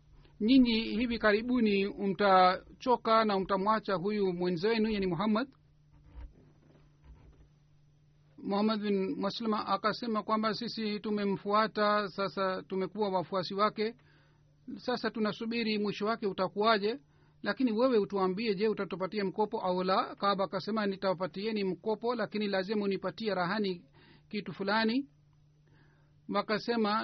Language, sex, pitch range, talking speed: Swahili, male, 190-220 Hz, 100 wpm